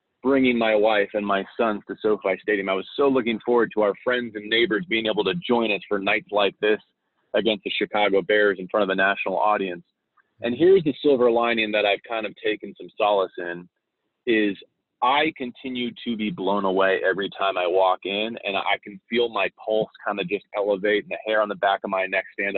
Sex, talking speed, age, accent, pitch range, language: male, 220 wpm, 30-49, American, 105-125 Hz, English